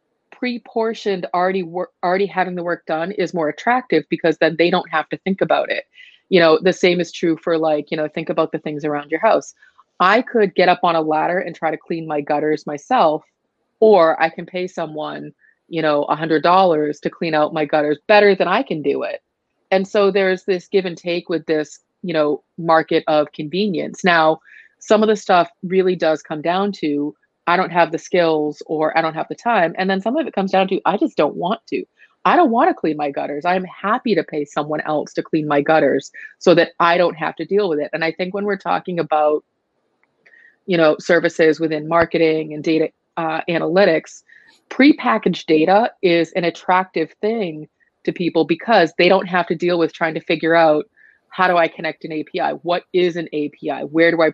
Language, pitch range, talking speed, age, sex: English, 155-185 Hz, 215 wpm, 30-49, female